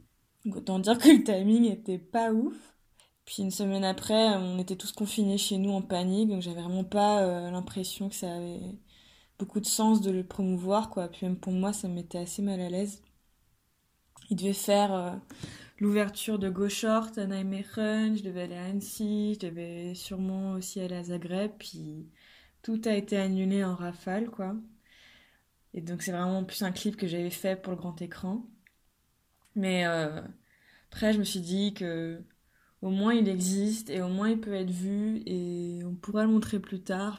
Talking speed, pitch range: 185 wpm, 180-205 Hz